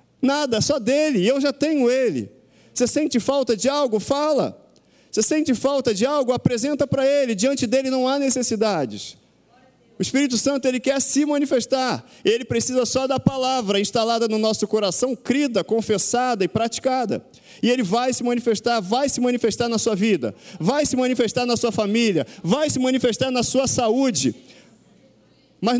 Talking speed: 165 wpm